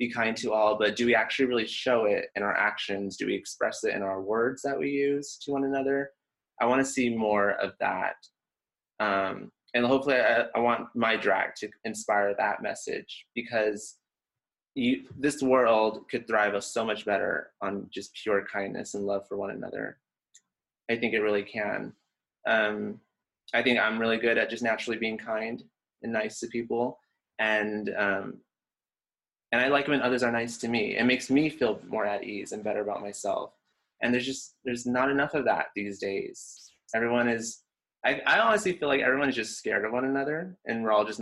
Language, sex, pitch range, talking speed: English, male, 110-135 Hz, 195 wpm